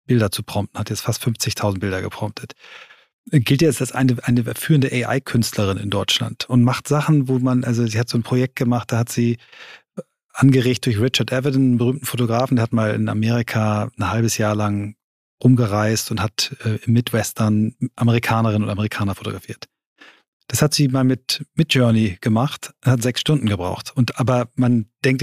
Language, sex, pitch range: German, male, 115-135 Hz